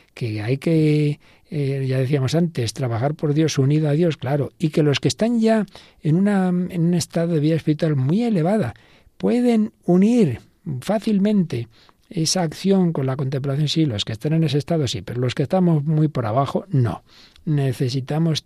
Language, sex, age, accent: Spanish, male, 60-79, Spanish